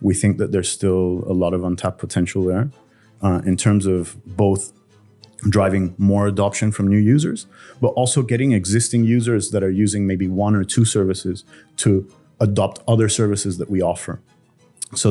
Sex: male